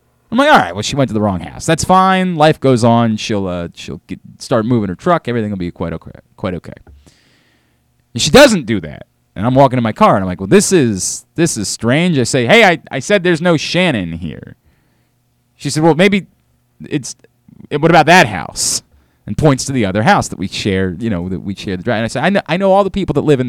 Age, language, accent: 30-49, English, American